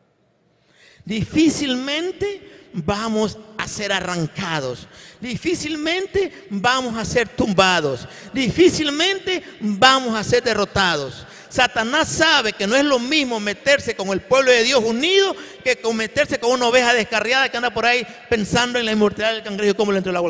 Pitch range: 155-230 Hz